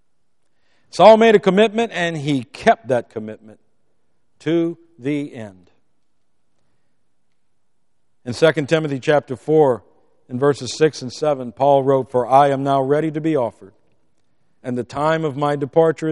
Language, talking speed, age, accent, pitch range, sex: English, 140 wpm, 50-69, American, 115-145 Hz, male